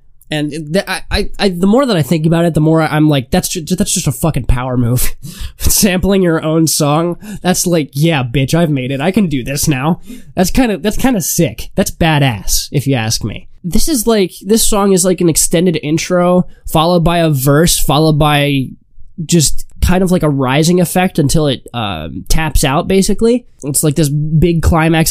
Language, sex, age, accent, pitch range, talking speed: English, male, 20-39, American, 140-180 Hz, 210 wpm